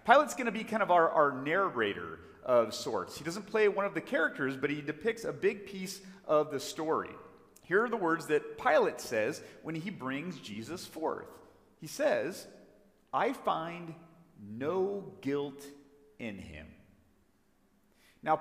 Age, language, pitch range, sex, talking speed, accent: 40-59, English, 135-185 Hz, male, 155 wpm, American